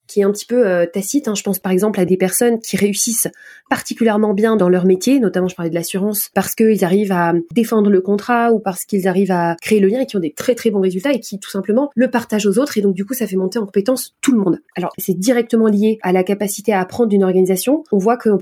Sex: female